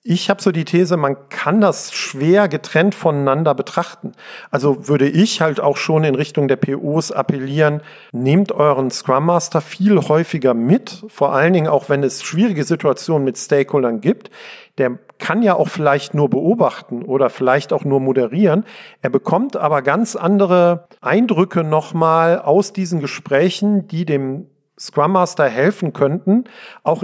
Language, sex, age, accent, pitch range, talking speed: German, male, 50-69, German, 140-180 Hz, 155 wpm